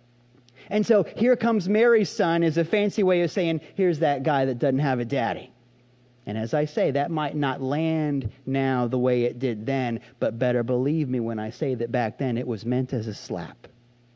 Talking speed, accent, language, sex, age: 210 wpm, American, English, male, 30-49